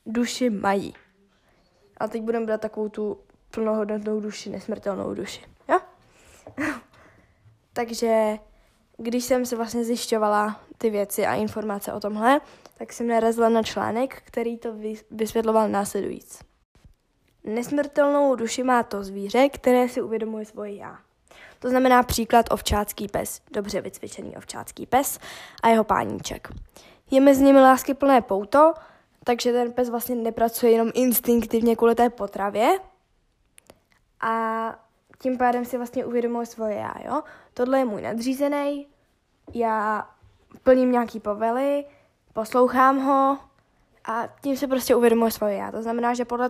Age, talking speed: 10-29, 130 wpm